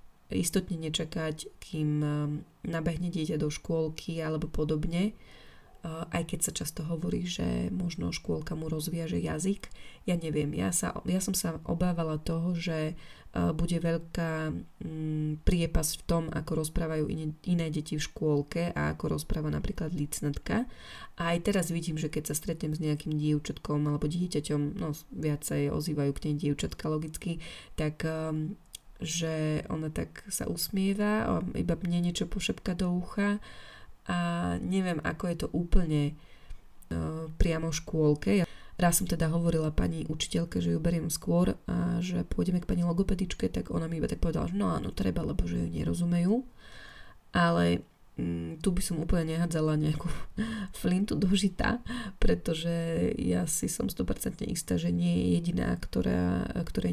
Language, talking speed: Slovak, 150 wpm